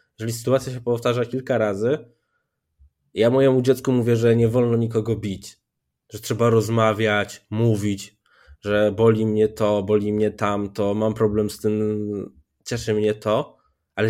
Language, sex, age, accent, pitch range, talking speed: Polish, male, 20-39, native, 105-135 Hz, 145 wpm